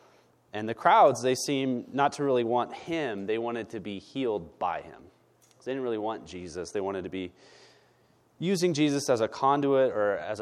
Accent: American